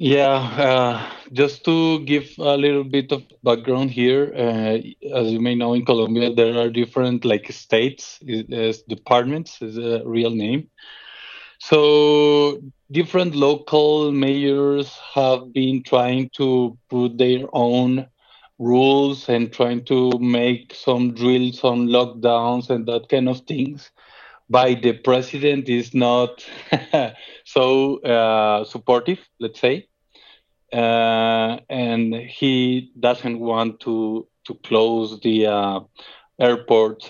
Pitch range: 115-135 Hz